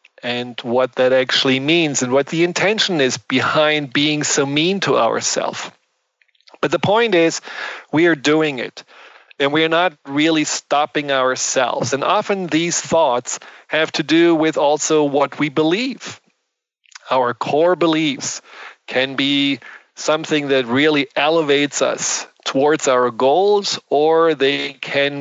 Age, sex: 40-59, male